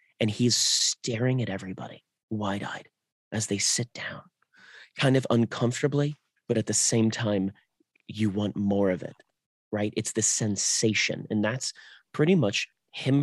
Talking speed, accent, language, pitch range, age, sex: 145 wpm, American, English, 105-130 Hz, 30-49, male